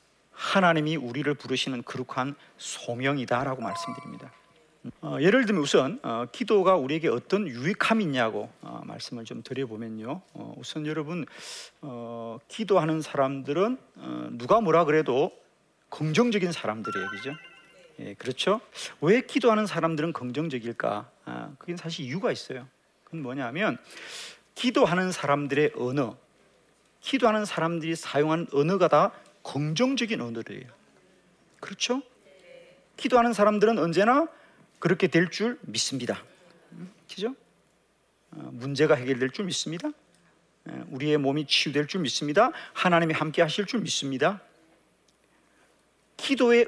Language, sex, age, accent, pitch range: Korean, male, 40-59, native, 140-210 Hz